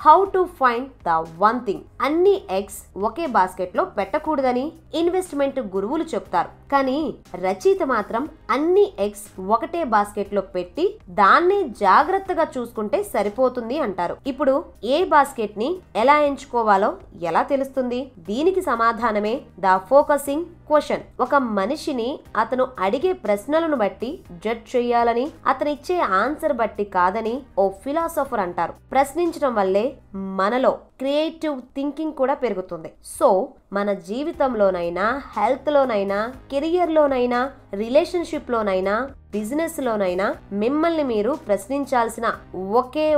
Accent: native